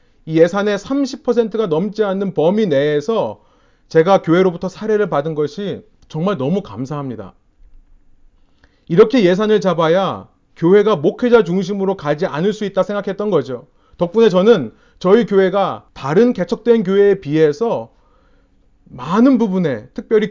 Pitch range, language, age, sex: 160-215 Hz, Korean, 30-49, male